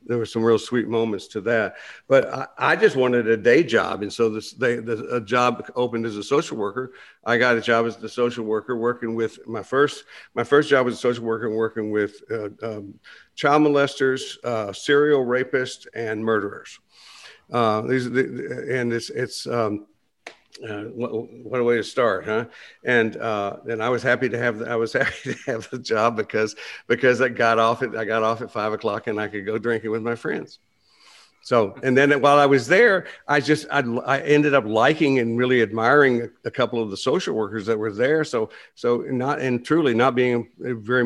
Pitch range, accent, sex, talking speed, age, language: 110-125 Hz, American, male, 205 wpm, 50-69, English